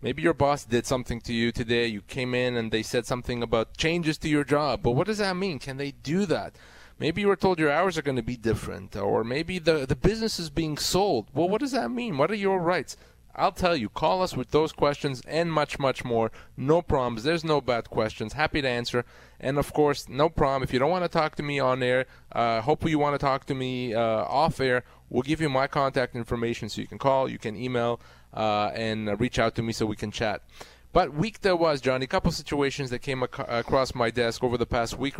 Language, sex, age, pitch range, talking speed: English, male, 30-49, 115-155 Hz, 250 wpm